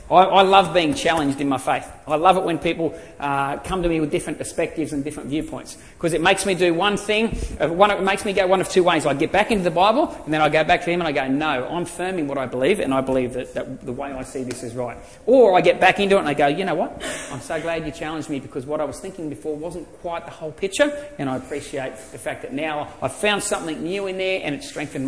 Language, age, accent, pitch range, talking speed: English, 30-49, Australian, 150-200 Hz, 280 wpm